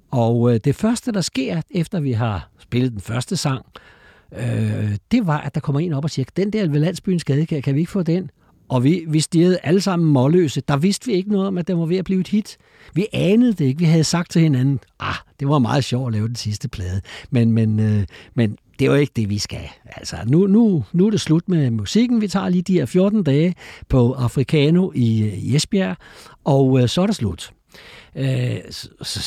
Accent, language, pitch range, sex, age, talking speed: native, Danish, 120-180 Hz, male, 60-79, 230 wpm